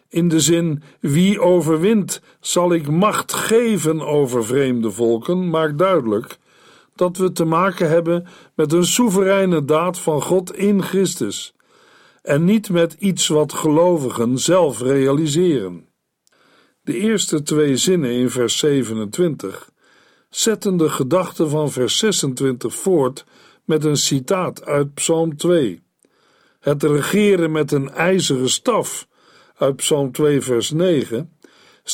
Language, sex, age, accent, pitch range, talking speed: Dutch, male, 50-69, Dutch, 145-190 Hz, 125 wpm